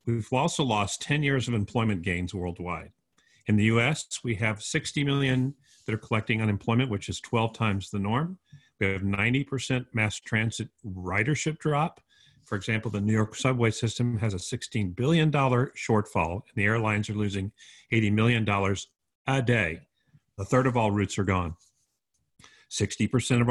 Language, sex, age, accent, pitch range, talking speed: English, male, 50-69, American, 100-125 Hz, 160 wpm